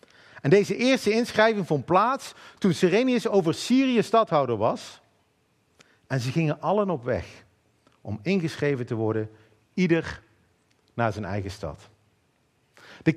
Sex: male